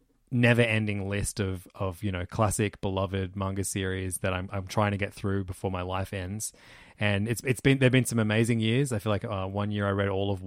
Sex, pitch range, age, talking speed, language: male, 95-115 Hz, 20-39, 230 wpm, English